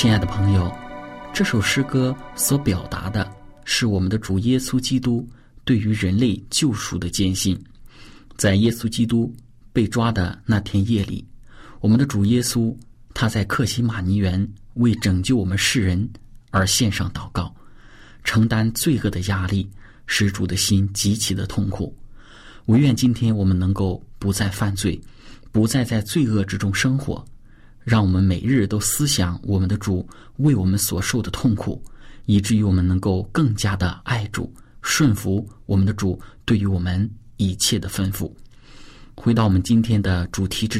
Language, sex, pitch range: Chinese, male, 95-120 Hz